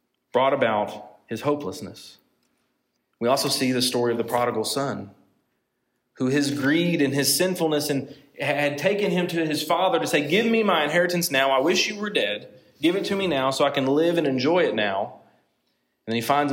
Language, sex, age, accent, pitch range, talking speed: English, male, 30-49, American, 120-160 Hz, 195 wpm